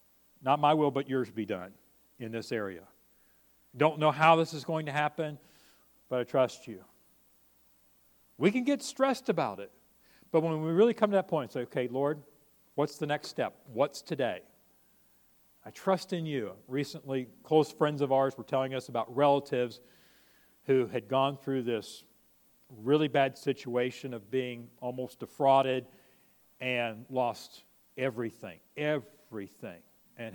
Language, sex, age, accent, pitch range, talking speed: English, male, 50-69, American, 115-150 Hz, 150 wpm